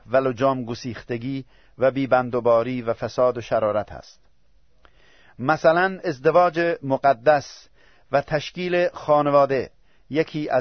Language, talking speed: Persian, 95 wpm